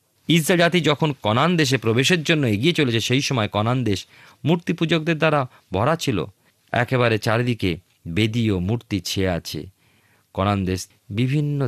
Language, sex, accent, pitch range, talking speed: Bengali, male, native, 95-135 Hz, 140 wpm